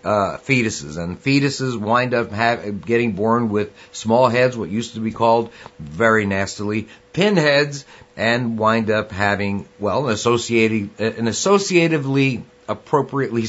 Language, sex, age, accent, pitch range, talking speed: English, male, 50-69, American, 105-125 Hz, 135 wpm